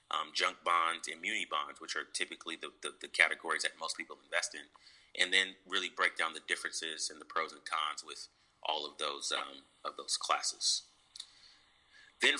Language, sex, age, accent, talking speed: English, male, 30-49, American, 190 wpm